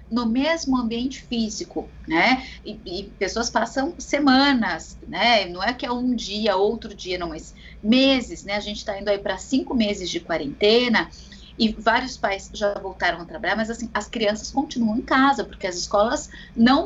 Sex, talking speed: female, 180 wpm